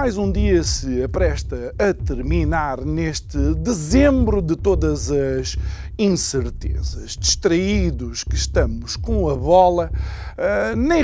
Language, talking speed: Portuguese, 110 wpm